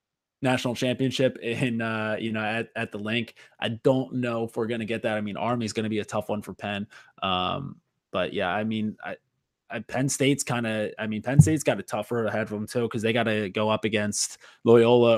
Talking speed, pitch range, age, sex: 240 wpm, 110-140 Hz, 20-39, male